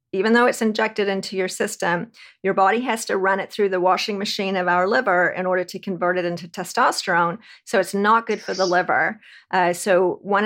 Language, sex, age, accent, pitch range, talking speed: English, female, 40-59, American, 180-205 Hz, 210 wpm